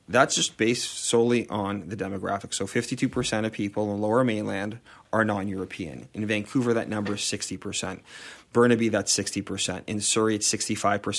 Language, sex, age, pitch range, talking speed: English, male, 30-49, 100-115 Hz, 150 wpm